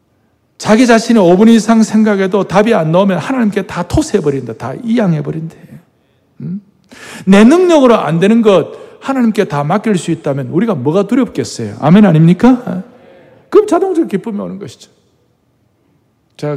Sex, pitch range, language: male, 120-195 Hz, Korean